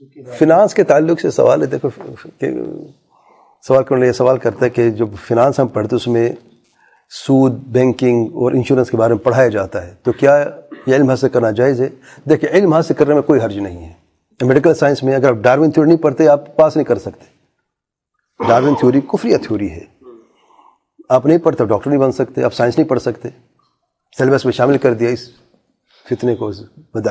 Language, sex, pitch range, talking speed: English, male, 120-155 Hz, 160 wpm